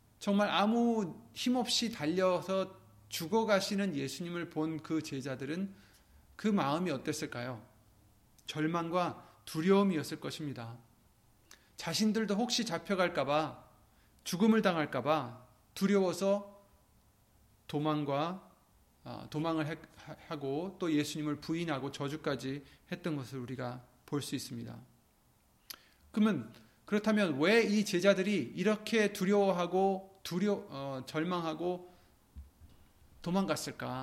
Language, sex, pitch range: Korean, male, 125-200 Hz